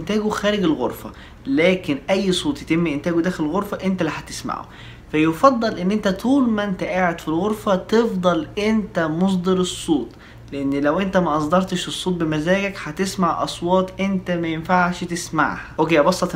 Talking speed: 150 wpm